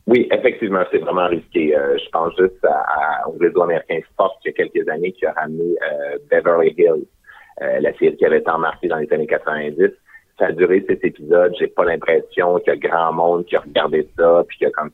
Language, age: French, 30-49